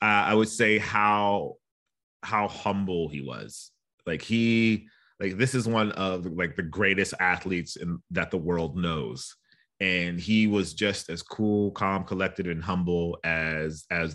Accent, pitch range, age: American, 85-105 Hz, 30-49